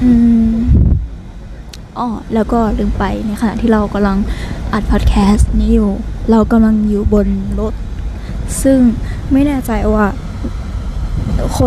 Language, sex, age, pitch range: Thai, female, 10-29, 185-235 Hz